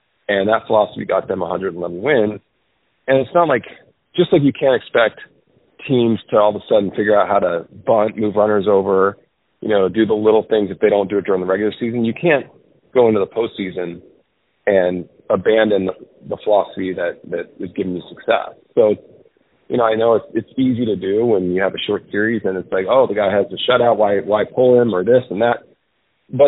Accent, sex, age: American, male, 40-59